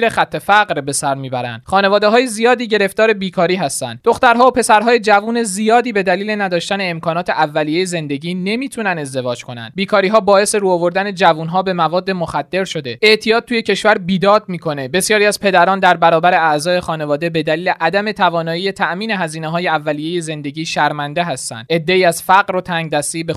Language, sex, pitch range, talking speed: Persian, male, 155-195 Hz, 155 wpm